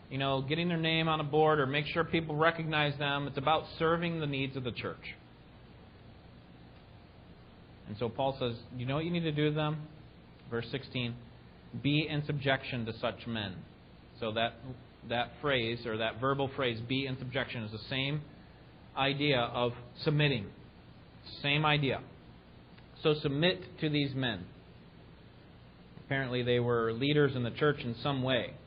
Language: English